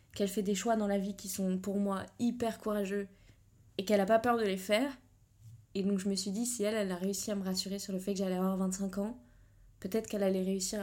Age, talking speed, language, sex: 20-39, 260 wpm, French, female